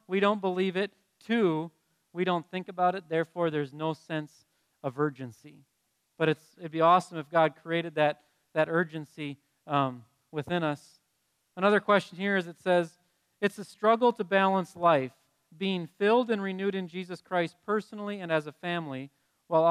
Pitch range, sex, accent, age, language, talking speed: 155-185 Hz, male, American, 40-59, English, 165 wpm